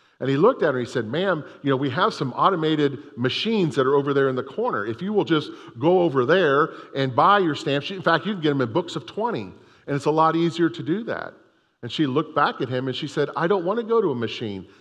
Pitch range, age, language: 130-170 Hz, 50-69, English